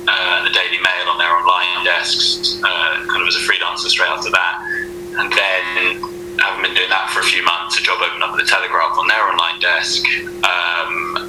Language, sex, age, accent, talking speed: English, male, 20-39, British, 205 wpm